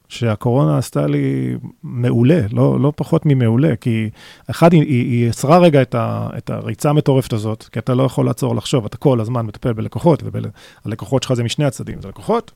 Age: 30-49